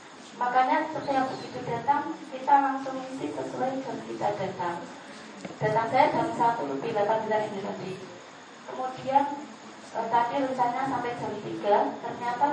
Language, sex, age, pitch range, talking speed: Malay, female, 30-49, 215-270 Hz, 130 wpm